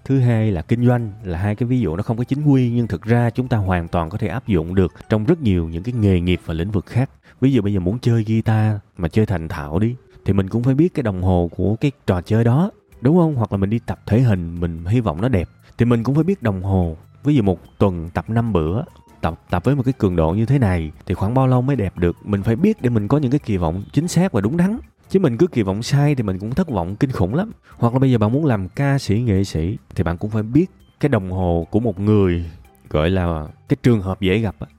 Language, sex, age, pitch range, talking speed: Vietnamese, male, 20-39, 90-125 Hz, 285 wpm